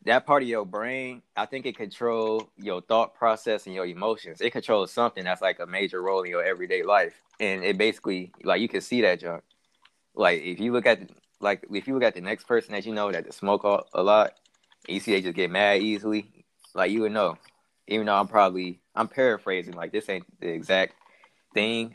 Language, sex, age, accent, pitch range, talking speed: English, male, 20-39, American, 90-110 Hz, 220 wpm